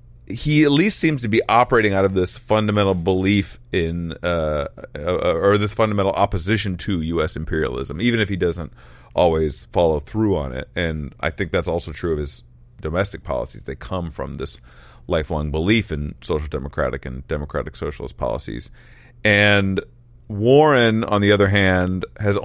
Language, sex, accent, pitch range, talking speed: English, male, American, 80-105 Hz, 165 wpm